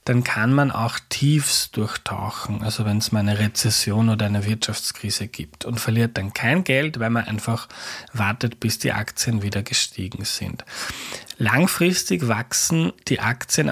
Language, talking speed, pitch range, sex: German, 155 wpm, 115-135 Hz, male